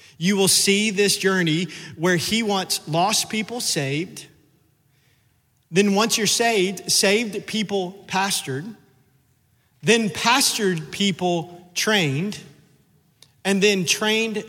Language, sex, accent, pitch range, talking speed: English, male, American, 155-200 Hz, 105 wpm